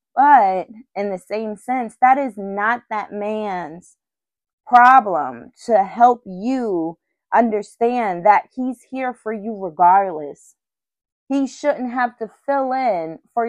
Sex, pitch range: female, 190-250 Hz